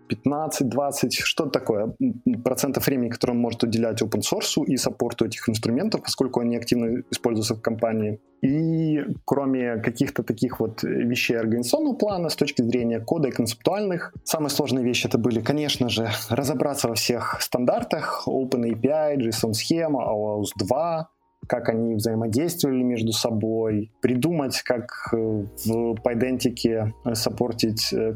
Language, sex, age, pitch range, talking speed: Ukrainian, male, 20-39, 110-130 Hz, 120 wpm